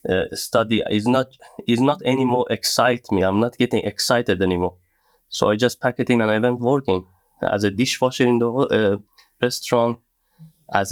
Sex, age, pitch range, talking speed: male, 20-39, 105-125 Hz, 175 wpm